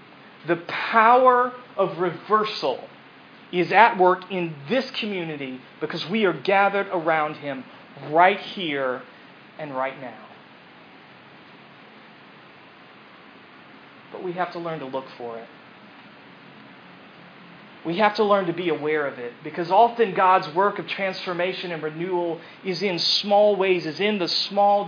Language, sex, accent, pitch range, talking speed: English, male, American, 150-195 Hz, 135 wpm